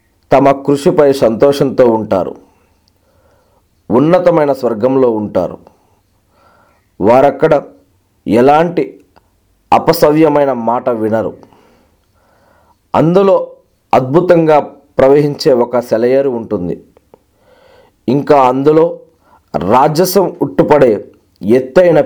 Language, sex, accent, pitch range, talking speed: Telugu, male, native, 115-165 Hz, 65 wpm